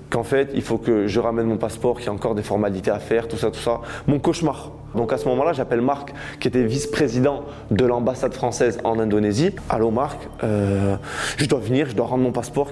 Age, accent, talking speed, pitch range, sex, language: 20-39, French, 225 wpm, 120-155 Hz, male, French